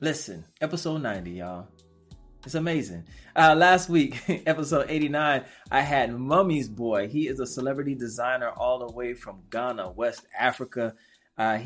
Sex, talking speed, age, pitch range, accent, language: male, 145 wpm, 20-39, 110-145 Hz, American, English